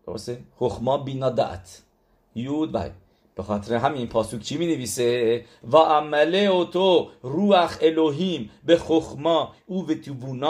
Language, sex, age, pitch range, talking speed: English, male, 50-69, 110-145 Hz, 125 wpm